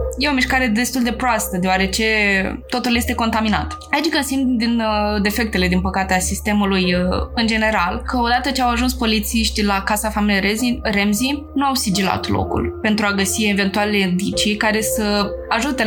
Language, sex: Romanian, female